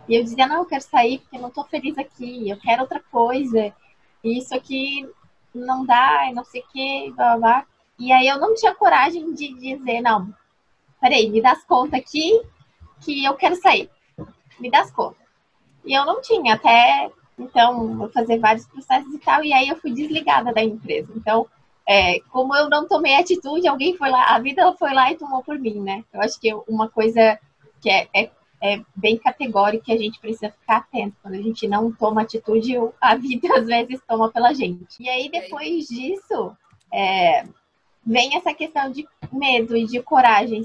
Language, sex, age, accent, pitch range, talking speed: Portuguese, female, 20-39, Brazilian, 225-290 Hz, 190 wpm